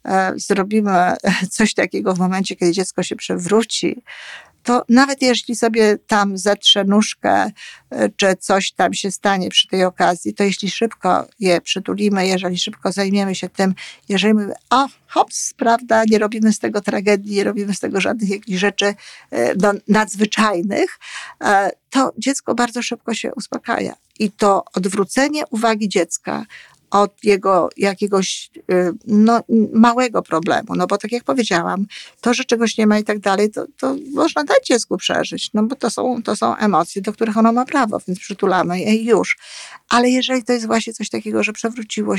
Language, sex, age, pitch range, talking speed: Polish, female, 50-69, 195-230 Hz, 160 wpm